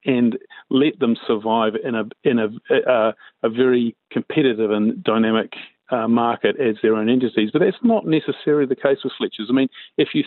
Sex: male